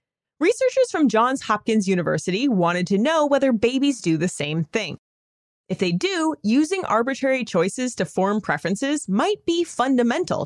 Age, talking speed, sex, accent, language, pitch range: 30-49, 150 wpm, female, American, English, 195-290 Hz